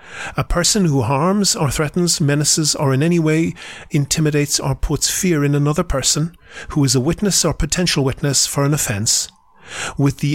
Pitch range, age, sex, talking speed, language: 125-155 Hz, 40-59, male, 175 wpm, English